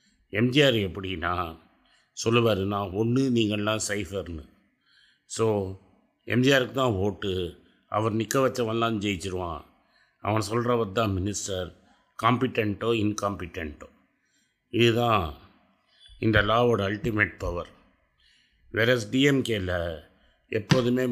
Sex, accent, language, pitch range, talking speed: male, native, Tamil, 95-120 Hz, 80 wpm